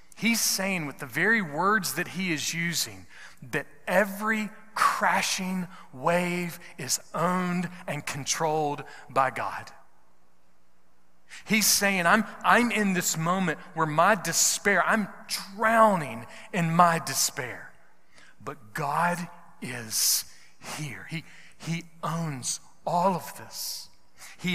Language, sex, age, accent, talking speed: English, male, 40-59, American, 110 wpm